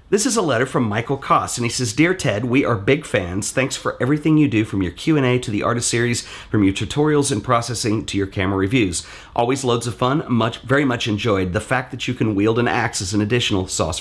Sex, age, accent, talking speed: male, 40-59, American, 245 wpm